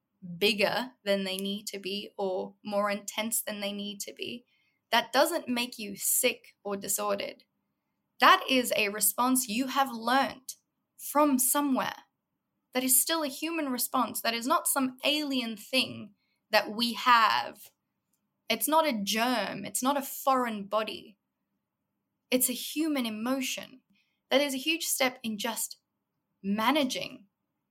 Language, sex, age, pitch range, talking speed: English, female, 10-29, 205-265 Hz, 145 wpm